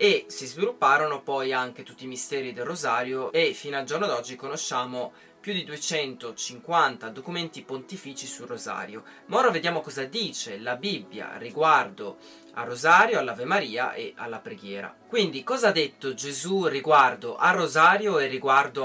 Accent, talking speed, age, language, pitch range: native, 155 wpm, 20-39, Italian, 135-210 Hz